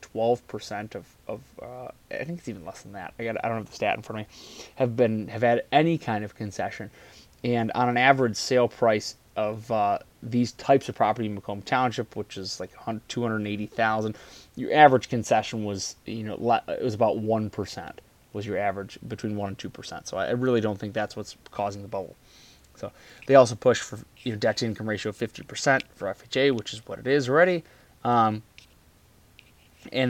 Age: 20-39